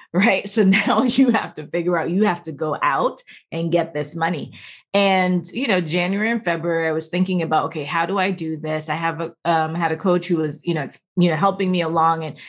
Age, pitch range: 30-49, 160-195 Hz